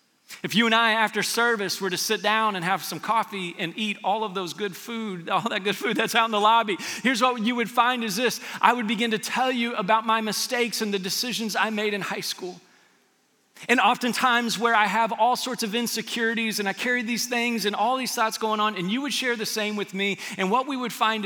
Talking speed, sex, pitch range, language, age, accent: 245 wpm, male, 170-225 Hz, English, 40-59, American